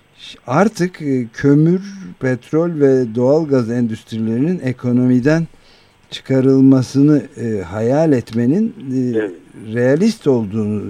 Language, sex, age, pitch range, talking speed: Turkish, male, 50-69, 110-140 Hz, 85 wpm